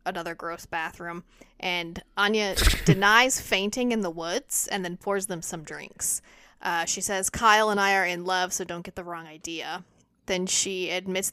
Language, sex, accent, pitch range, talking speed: English, female, American, 175-205 Hz, 180 wpm